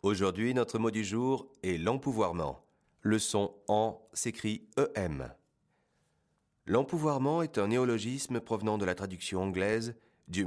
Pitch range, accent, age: 90-120 Hz, French, 30-49